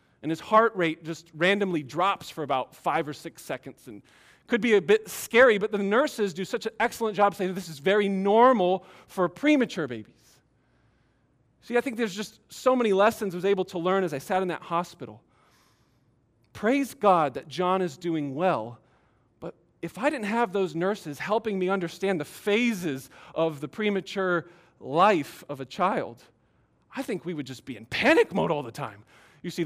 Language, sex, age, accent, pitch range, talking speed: English, male, 40-59, American, 160-210 Hz, 190 wpm